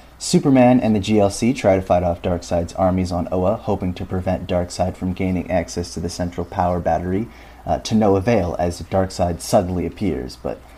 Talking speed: 185 wpm